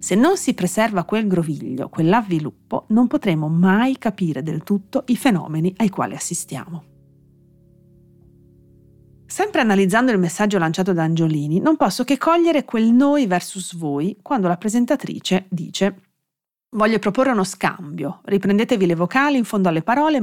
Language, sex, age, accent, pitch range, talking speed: Italian, female, 40-59, native, 165-235 Hz, 140 wpm